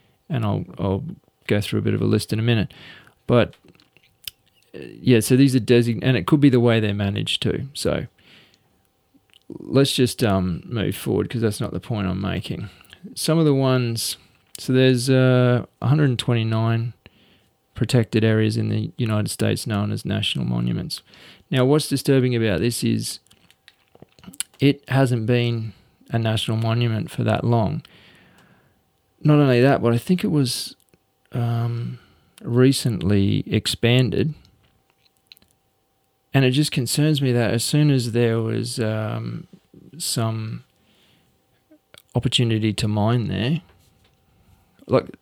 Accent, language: Australian, English